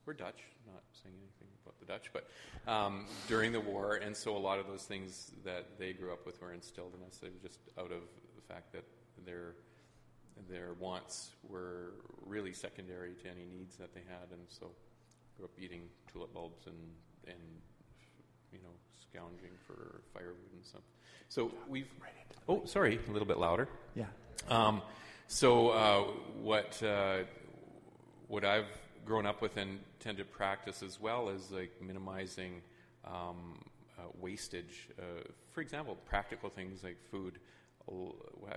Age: 40-59